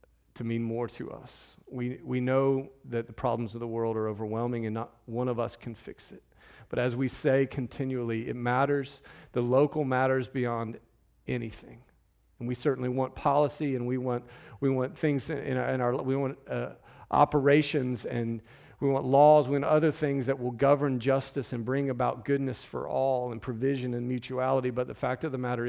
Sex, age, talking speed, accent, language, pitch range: male, 40-59, 195 wpm, American, English, 110-130 Hz